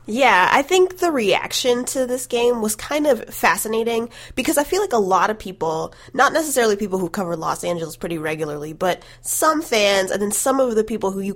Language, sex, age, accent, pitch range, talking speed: English, female, 20-39, American, 175-245 Hz, 210 wpm